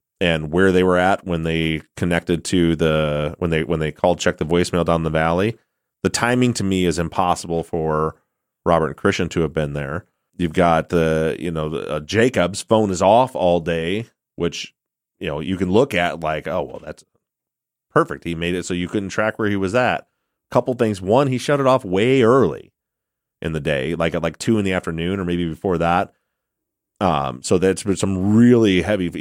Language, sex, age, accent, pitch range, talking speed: English, male, 30-49, American, 85-110 Hz, 205 wpm